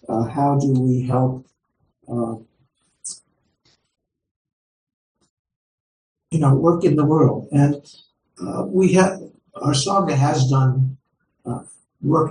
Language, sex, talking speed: English, male, 105 wpm